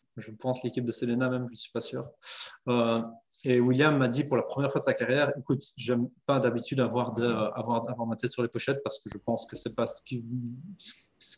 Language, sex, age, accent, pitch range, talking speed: French, male, 20-39, French, 120-135 Hz, 245 wpm